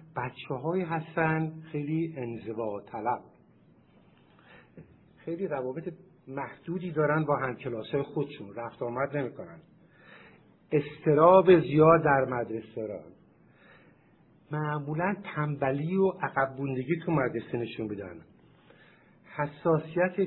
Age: 50-69